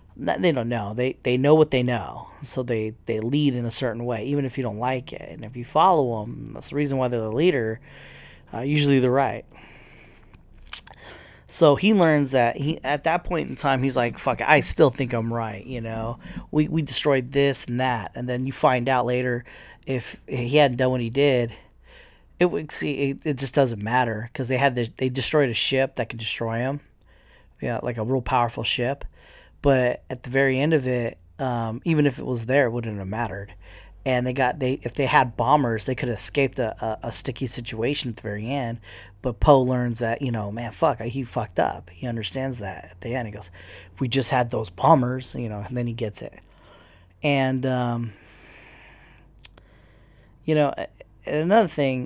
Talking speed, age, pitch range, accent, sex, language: 210 wpm, 30-49, 115-135 Hz, American, male, English